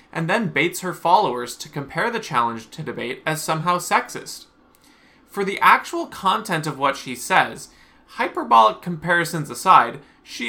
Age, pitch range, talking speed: 20-39, 130-190 Hz, 150 wpm